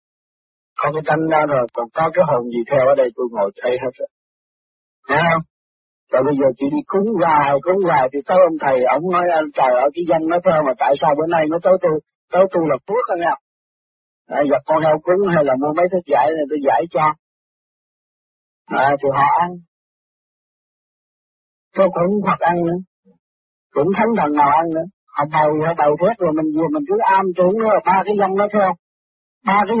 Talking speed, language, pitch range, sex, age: 215 wpm, Vietnamese, 145-190 Hz, male, 50-69